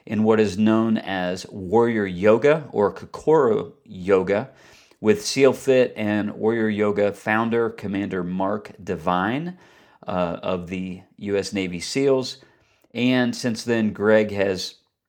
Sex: male